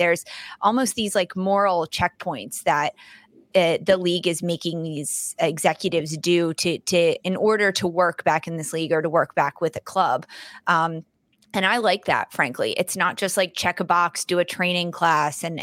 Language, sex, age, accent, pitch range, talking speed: English, female, 20-39, American, 175-215 Hz, 190 wpm